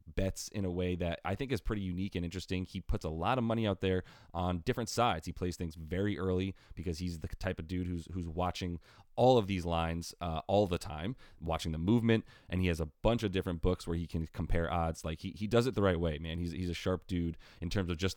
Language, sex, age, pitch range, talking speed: English, male, 30-49, 85-95 Hz, 260 wpm